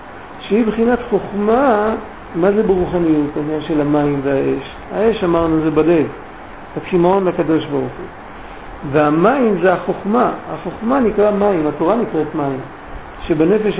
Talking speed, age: 120 wpm, 50-69